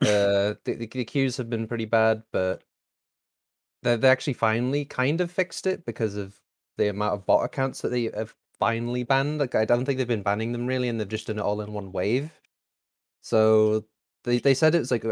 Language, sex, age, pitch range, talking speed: German, male, 20-39, 105-125 Hz, 220 wpm